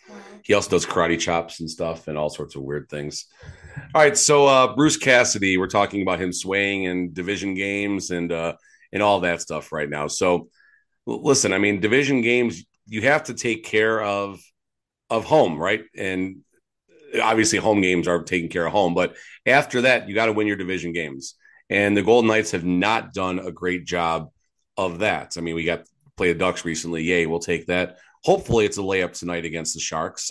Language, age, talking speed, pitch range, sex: English, 30-49, 200 wpm, 85-110 Hz, male